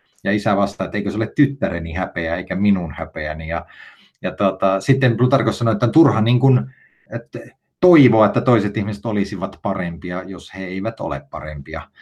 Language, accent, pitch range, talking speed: Finnish, native, 95-130 Hz, 160 wpm